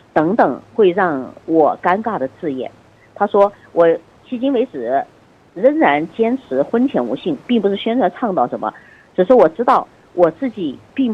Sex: female